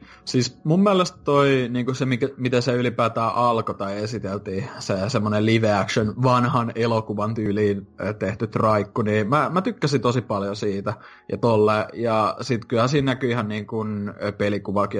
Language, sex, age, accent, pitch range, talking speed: Finnish, male, 20-39, native, 105-135 Hz, 155 wpm